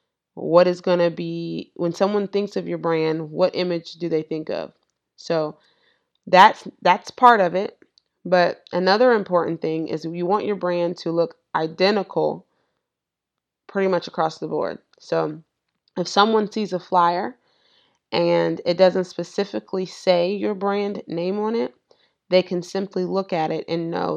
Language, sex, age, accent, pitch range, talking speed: English, female, 30-49, American, 170-195 Hz, 160 wpm